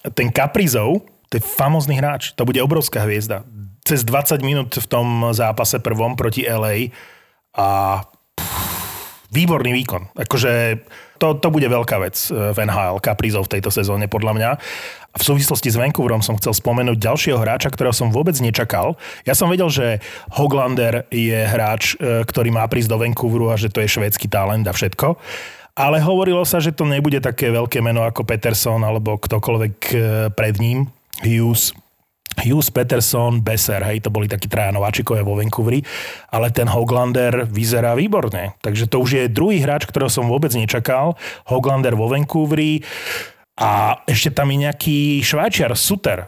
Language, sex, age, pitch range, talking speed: Slovak, male, 30-49, 110-135 Hz, 155 wpm